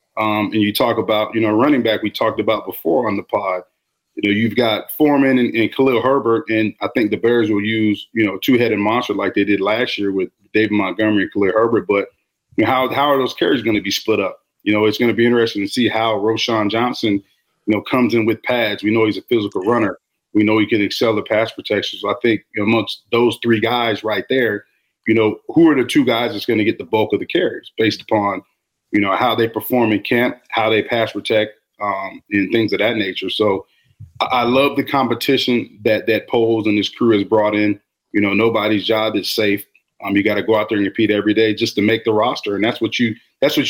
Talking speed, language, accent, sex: 245 wpm, English, American, male